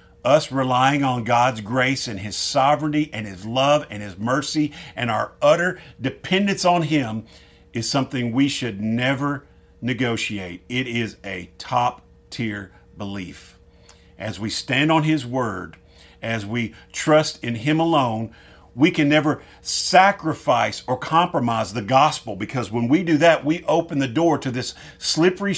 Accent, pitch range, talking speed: American, 105-140 Hz, 150 wpm